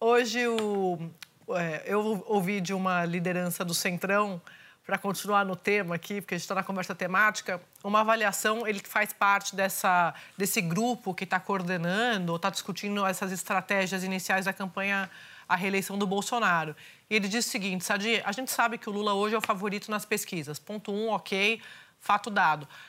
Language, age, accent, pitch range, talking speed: Portuguese, 30-49, Brazilian, 185-225 Hz, 170 wpm